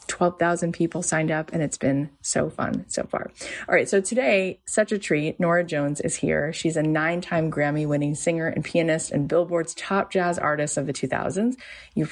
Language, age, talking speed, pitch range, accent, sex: English, 30-49, 190 wpm, 145-170 Hz, American, female